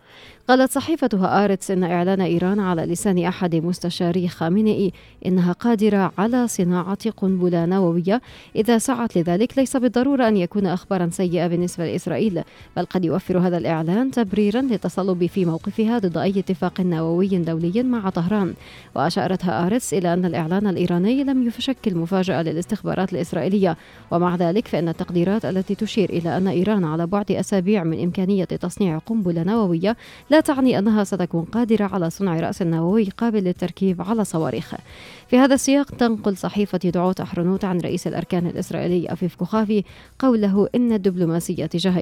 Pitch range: 175-215 Hz